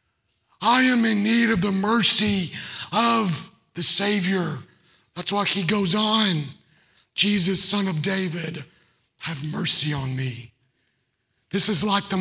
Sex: male